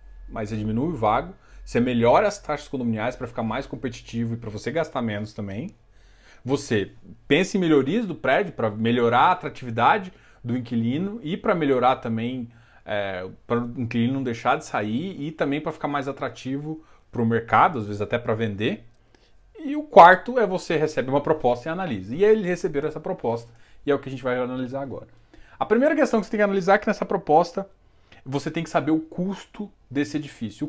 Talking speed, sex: 200 wpm, male